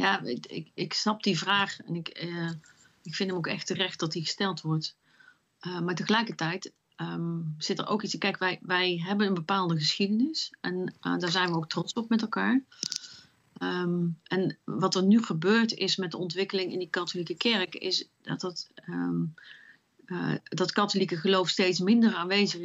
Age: 40-59